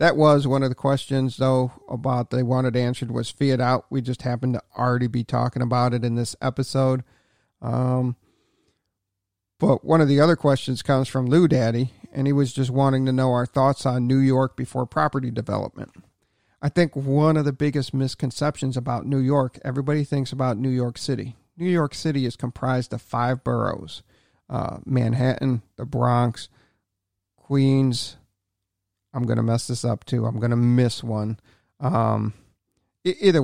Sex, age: male, 40-59